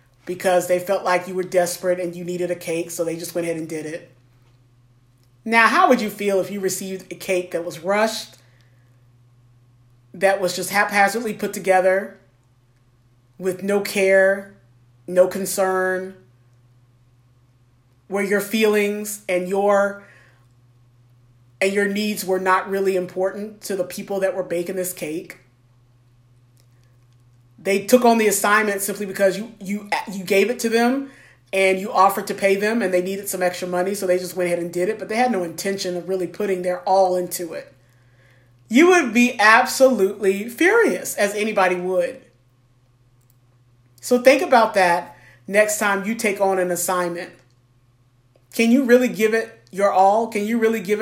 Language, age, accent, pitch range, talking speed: English, 30-49, American, 125-205 Hz, 165 wpm